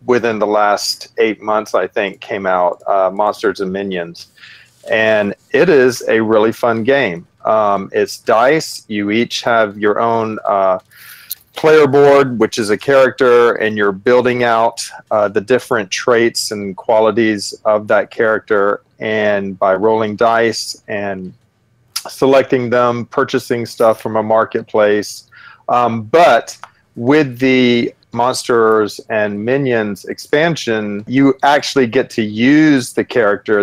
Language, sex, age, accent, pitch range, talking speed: English, male, 40-59, American, 105-125 Hz, 135 wpm